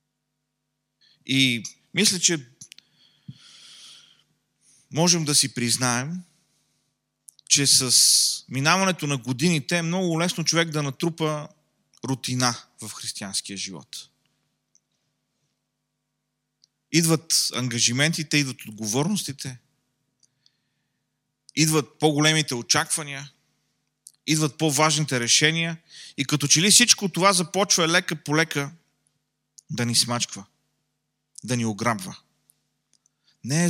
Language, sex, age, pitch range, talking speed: Bulgarian, male, 30-49, 125-165 Hz, 90 wpm